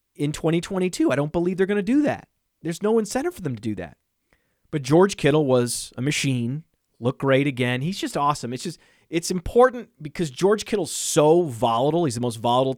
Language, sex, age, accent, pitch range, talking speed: English, male, 30-49, American, 125-160 Hz, 200 wpm